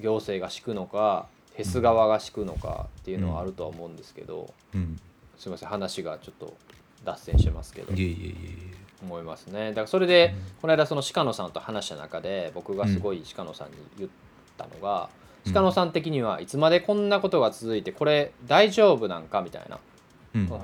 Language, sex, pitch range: Japanese, male, 95-155 Hz